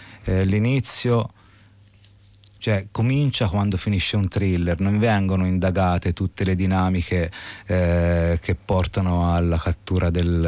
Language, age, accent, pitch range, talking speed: Italian, 30-49, native, 90-105 Hz, 115 wpm